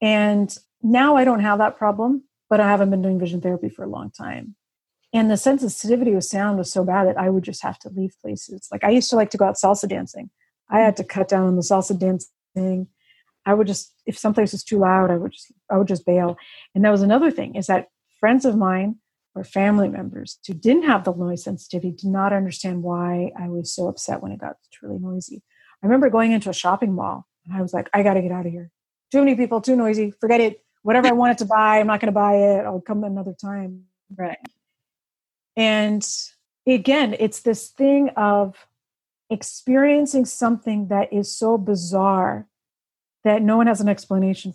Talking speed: 215 wpm